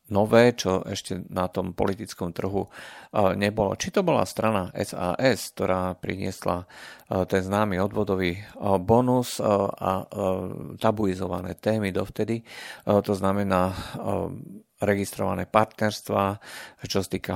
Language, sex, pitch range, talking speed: Slovak, male, 95-110 Hz, 100 wpm